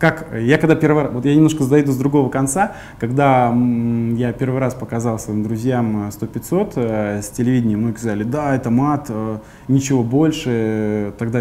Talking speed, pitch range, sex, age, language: 155 wpm, 110-135 Hz, male, 20-39, Russian